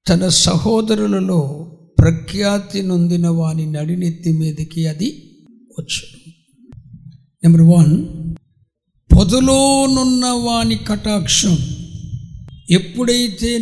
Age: 60-79